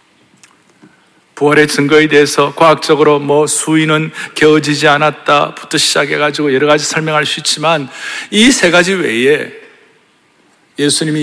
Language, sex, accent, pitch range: Korean, male, native, 150-225 Hz